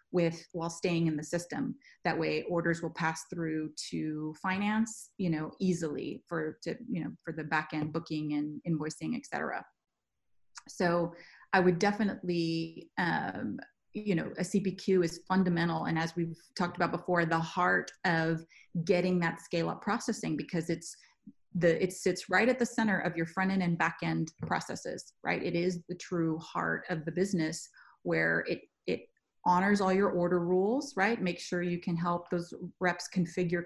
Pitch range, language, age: 170-195 Hz, English, 30-49